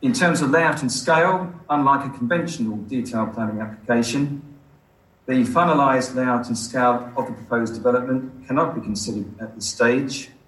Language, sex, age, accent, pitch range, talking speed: English, male, 40-59, British, 110-135 Hz, 155 wpm